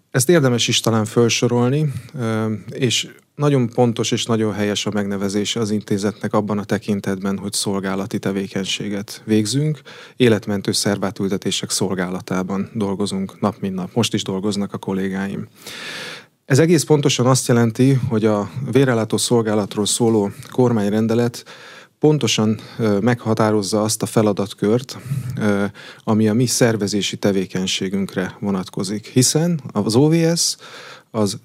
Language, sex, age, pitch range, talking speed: Hungarian, male, 30-49, 100-125 Hz, 115 wpm